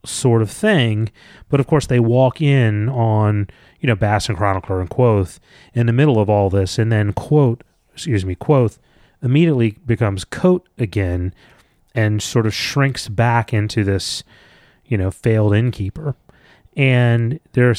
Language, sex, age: English, male, 30-49